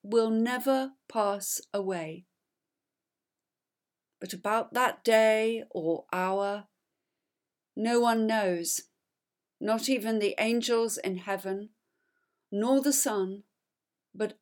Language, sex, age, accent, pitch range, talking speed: English, female, 50-69, British, 200-275 Hz, 95 wpm